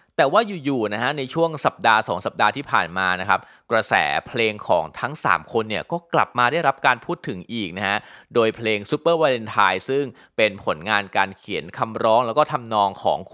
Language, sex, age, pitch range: Thai, male, 20-39, 105-130 Hz